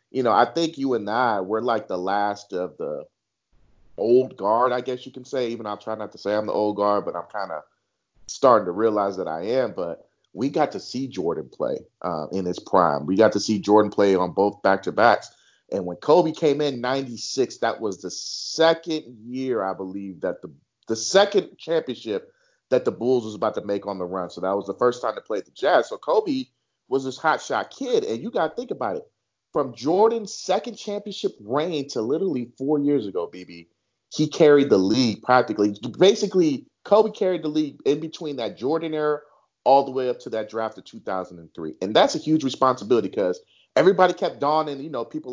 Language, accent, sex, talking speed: English, American, male, 210 wpm